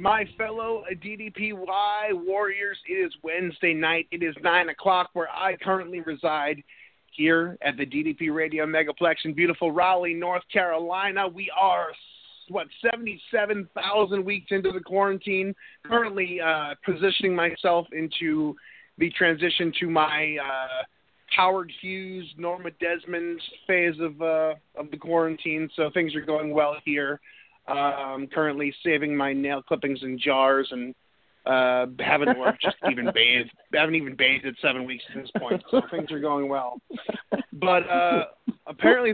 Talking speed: 145 wpm